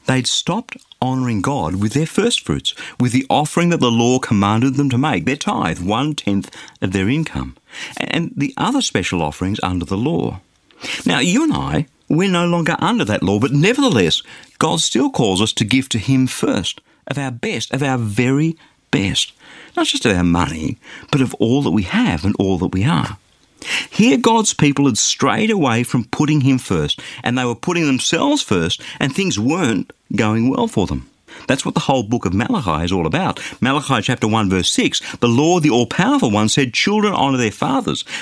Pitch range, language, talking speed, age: 110-170 Hz, English, 195 wpm, 50-69